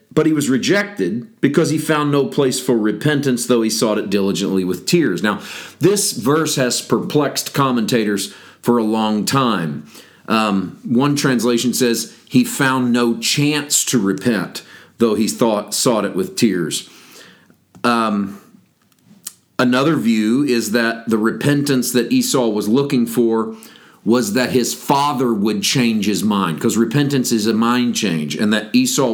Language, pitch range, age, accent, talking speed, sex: English, 110-140 Hz, 40-59, American, 150 wpm, male